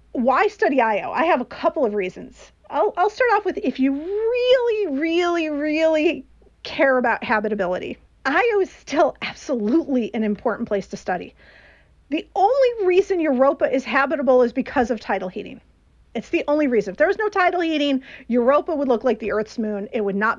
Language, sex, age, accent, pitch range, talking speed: English, female, 40-59, American, 230-315 Hz, 180 wpm